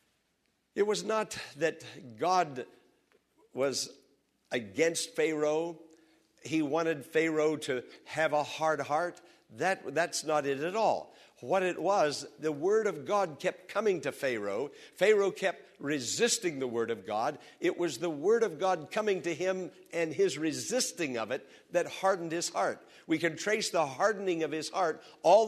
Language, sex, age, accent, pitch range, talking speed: English, male, 60-79, American, 155-200 Hz, 160 wpm